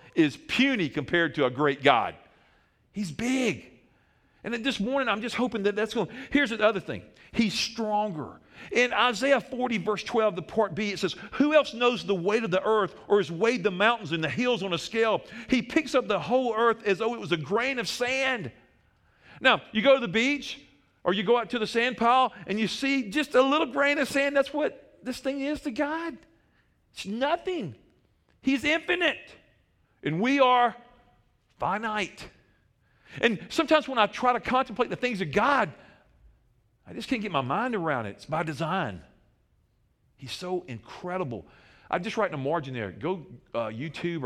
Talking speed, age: 190 wpm, 50-69